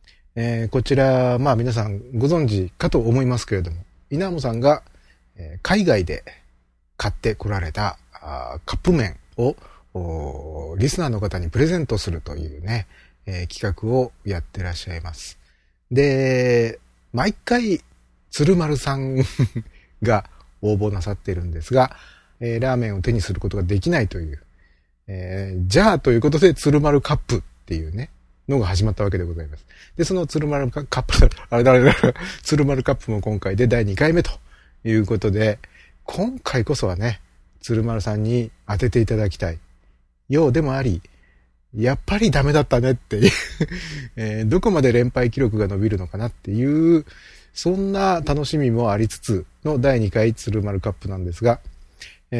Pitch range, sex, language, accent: 90-135 Hz, male, Japanese, native